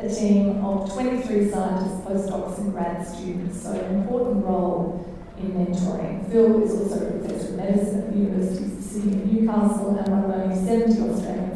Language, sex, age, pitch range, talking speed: English, female, 30-49, 195-220 Hz, 185 wpm